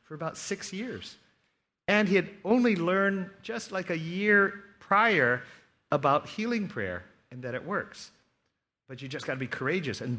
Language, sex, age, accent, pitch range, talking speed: English, male, 50-69, American, 115-180 Hz, 170 wpm